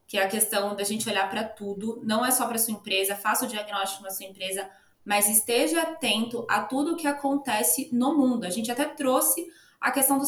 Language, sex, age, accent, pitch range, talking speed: Portuguese, female, 20-39, Brazilian, 200-255 Hz, 230 wpm